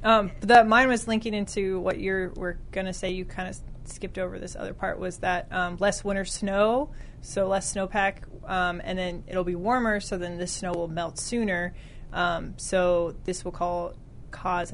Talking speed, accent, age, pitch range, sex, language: 195 wpm, American, 20-39, 175-195 Hz, female, English